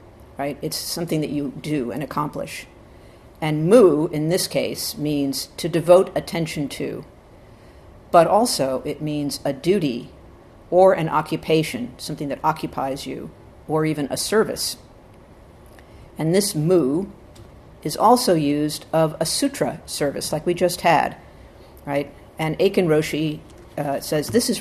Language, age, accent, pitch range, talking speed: English, 50-69, American, 140-170 Hz, 140 wpm